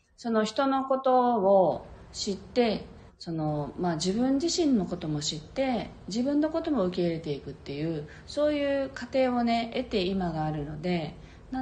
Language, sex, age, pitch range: Japanese, female, 40-59, 165-255 Hz